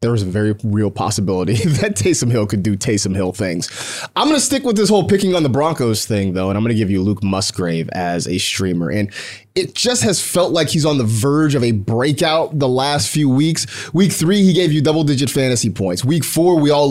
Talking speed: 240 wpm